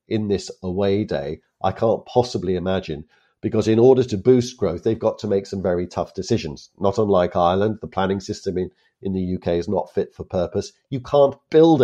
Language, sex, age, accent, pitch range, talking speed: English, male, 50-69, British, 90-115 Hz, 210 wpm